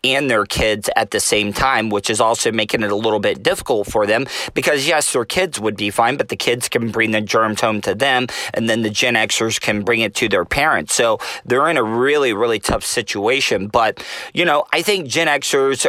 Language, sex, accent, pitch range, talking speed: English, male, American, 120-145 Hz, 230 wpm